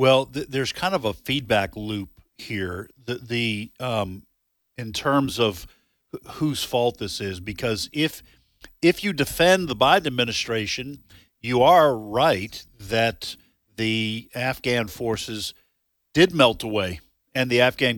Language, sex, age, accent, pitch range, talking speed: English, male, 50-69, American, 110-130 Hz, 135 wpm